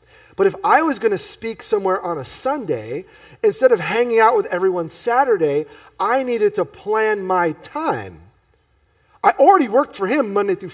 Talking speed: 175 wpm